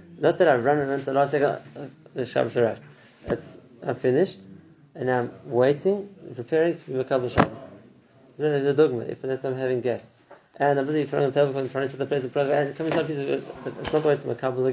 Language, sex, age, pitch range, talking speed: English, male, 30-49, 125-145 Hz, 235 wpm